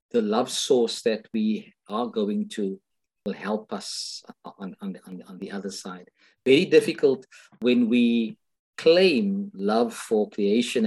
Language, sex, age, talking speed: English, male, 50-69, 135 wpm